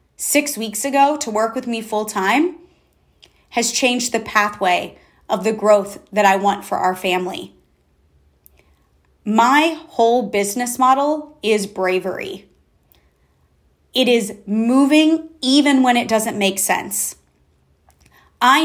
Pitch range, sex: 195-255 Hz, female